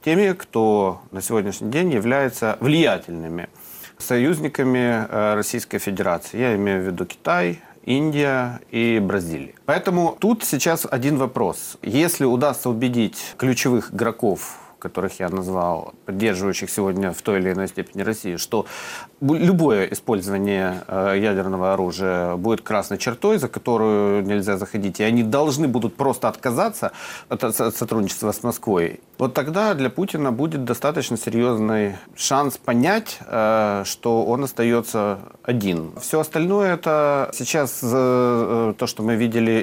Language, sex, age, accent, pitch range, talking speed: Russian, male, 40-59, native, 105-140 Hz, 125 wpm